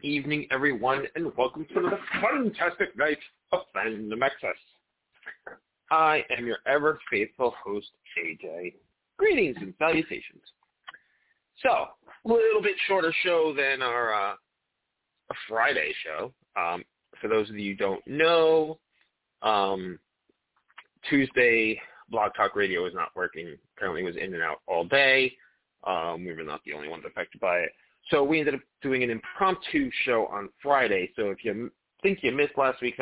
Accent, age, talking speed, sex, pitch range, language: American, 30-49, 155 wpm, male, 110-165 Hz, English